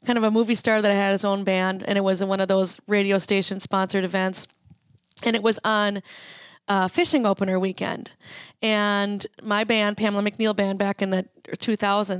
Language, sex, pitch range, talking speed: English, female, 195-235 Hz, 190 wpm